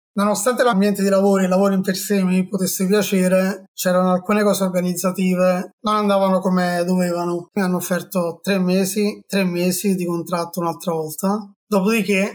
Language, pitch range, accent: Italian, 180-200 Hz, native